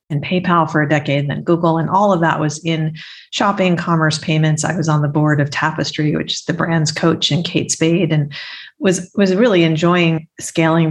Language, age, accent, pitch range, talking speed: English, 40-59, American, 155-175 Hz, 210 wpm